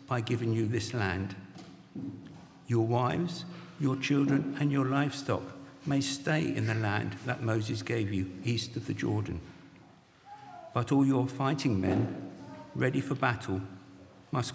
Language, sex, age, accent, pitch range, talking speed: English, male, 60-79, British, 105-135 Hz, 140 wpm